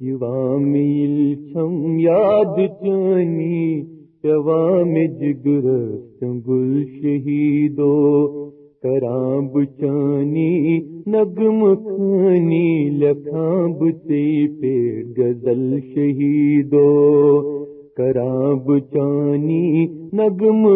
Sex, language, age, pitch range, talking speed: male, Urdu, 40-59, 145-195 Hz, 40 wpm